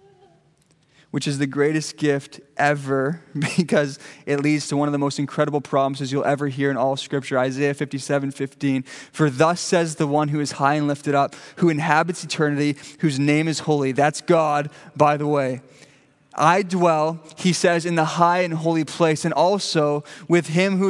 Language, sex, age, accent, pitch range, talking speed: English, male, 20-39, American, 145-185 Hz, 185 wpm